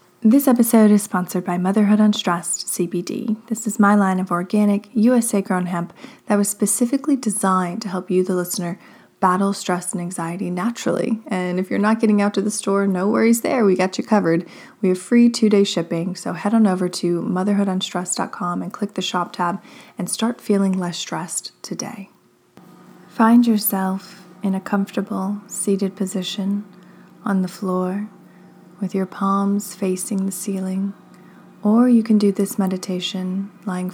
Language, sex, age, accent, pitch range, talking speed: English, female, 20-39, American, 180-205 Hz, 160 wpm